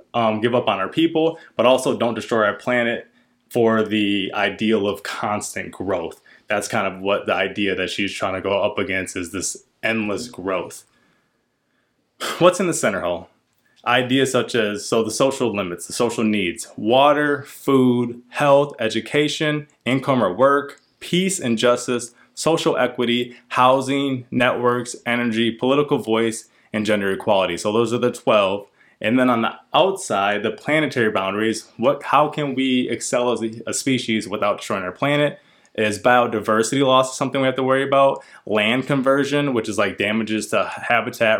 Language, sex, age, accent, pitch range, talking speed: English, male, 20-39, American, 110-140 Hz, 160 wpm